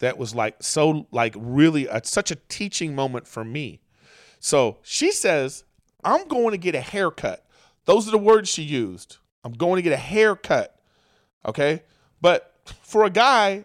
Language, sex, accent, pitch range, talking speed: English, male, American, 145-210 Hz, 170 wpm